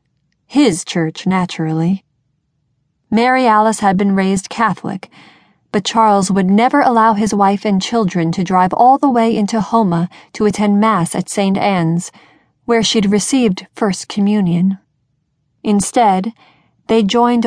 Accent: American